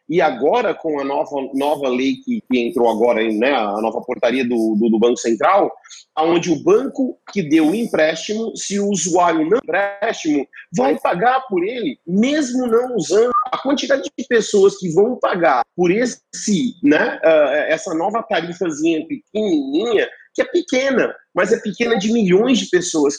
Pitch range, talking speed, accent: 155-265 Hz, 170 wpm, Brazilian